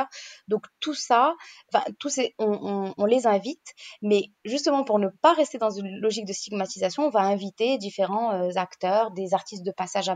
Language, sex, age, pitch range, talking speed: French, female, 20-39, 195-260 Hz, 190 wpm